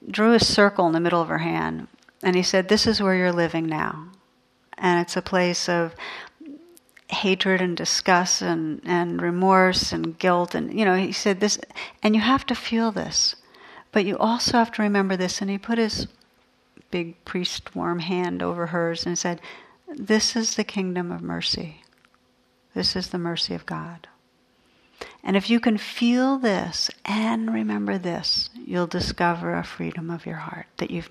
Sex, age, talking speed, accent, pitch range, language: female, 60-79, 175 wpm, American, 170-200 Hz, English